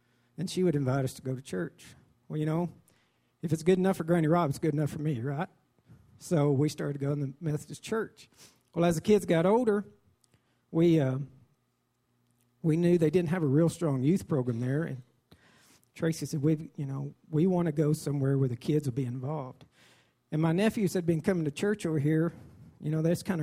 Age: 50-69